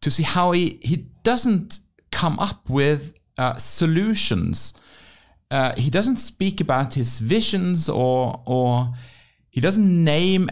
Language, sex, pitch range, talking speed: English, male, 115-165 Hz, 130 wpm